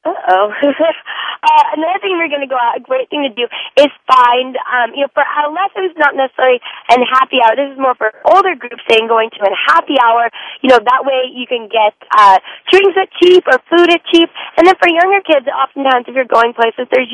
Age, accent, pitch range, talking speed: 20-39, American, 240-310 Hz, 225 wpm